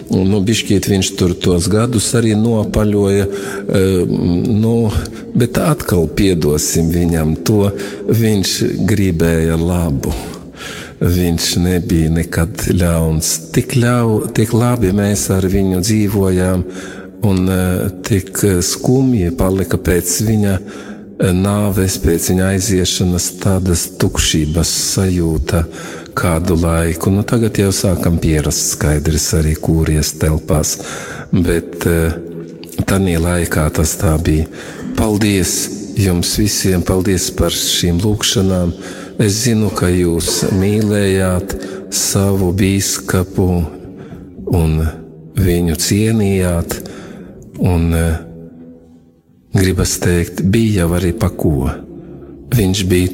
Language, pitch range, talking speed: English, 85-100 Hz, 95 wpm